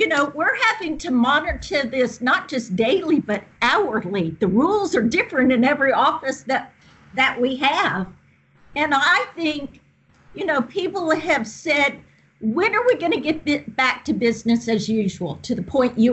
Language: English